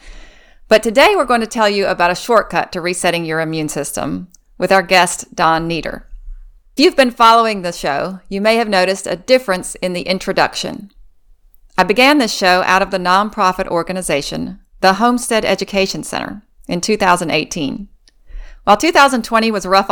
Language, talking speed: English, 165 wpm